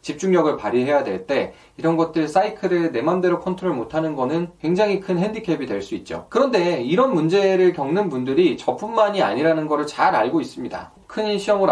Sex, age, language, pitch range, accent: male, 20-39, Korean, 150-195 Hz, native